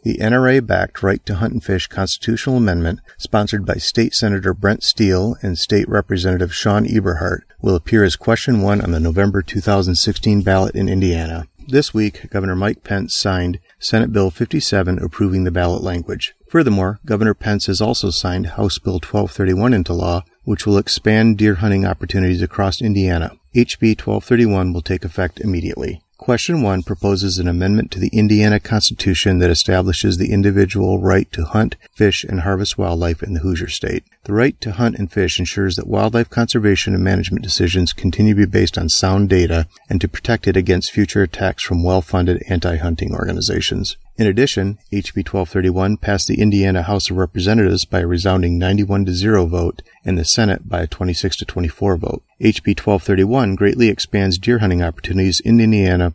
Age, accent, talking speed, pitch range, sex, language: 40-59, American, 170 wpm, 90-105 Hz, male, English